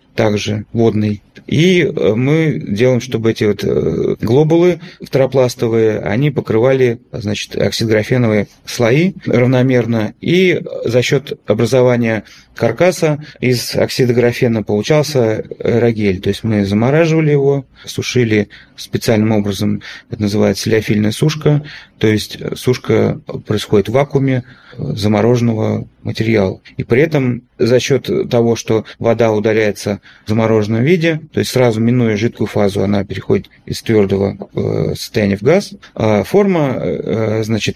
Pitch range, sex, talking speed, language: 105-135 Hz, male, 115 wpm, Russian